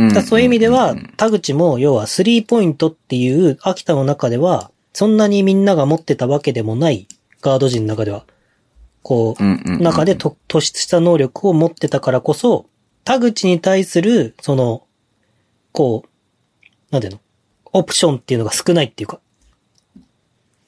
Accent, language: native, Japanese